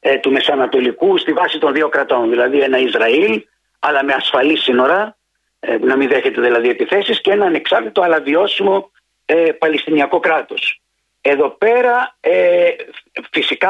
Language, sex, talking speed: Greek, male, 125 wpm